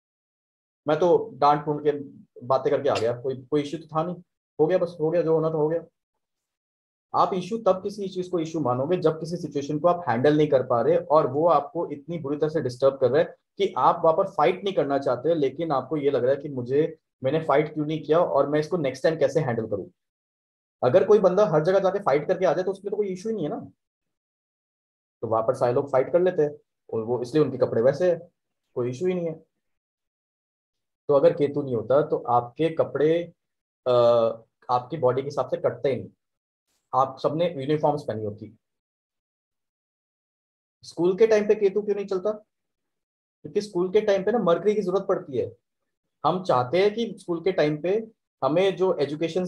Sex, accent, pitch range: male, native, 140-185 Hz